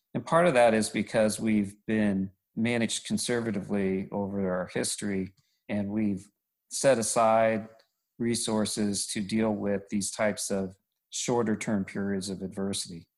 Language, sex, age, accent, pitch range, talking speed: English, male, 40-59, American, 100-115 Hz, 130 wpm